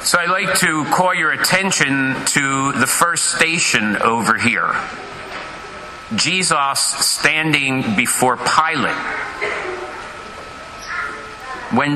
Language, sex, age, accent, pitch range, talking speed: English, male, 50-69, American, 135-175 Hz, 90 wpm